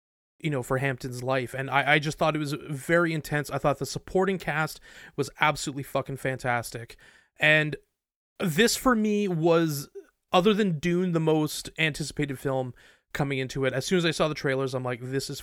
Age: 30-49